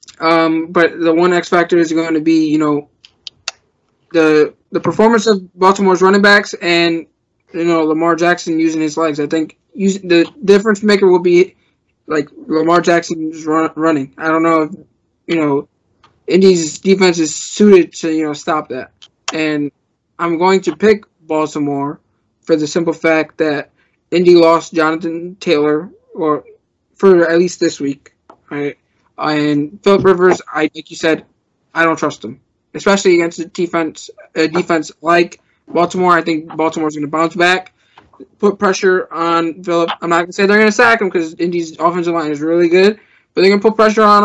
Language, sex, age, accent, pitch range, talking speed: English, male, 20-39, American, 155-185 Hz, 180 wpm